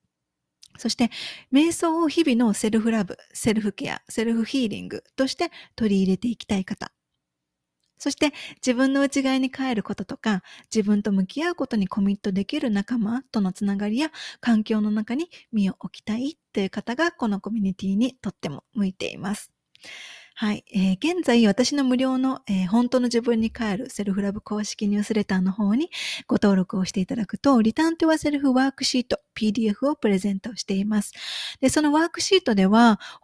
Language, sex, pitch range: Japanese, female, 205-265 Hz